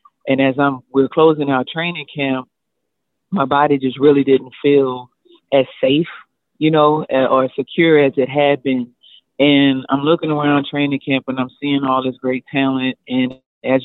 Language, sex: English, female